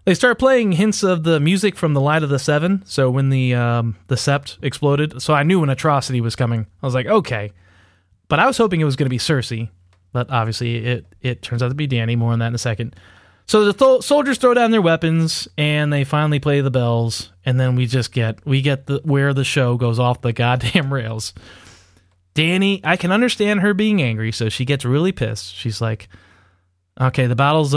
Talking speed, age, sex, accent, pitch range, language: 225 wpm, 20-39, male, American, 115-165 Hz, English